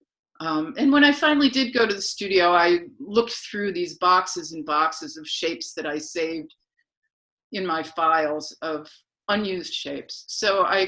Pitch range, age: 160-225 Hz, 50-69